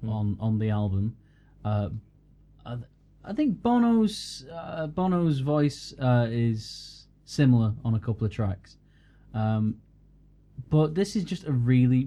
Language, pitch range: English, 105-130 Hz